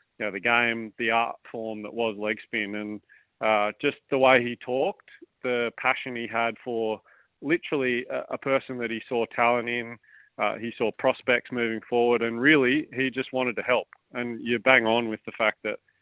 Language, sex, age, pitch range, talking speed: English, male, 30-49, 115-130 Hz, 190 wpm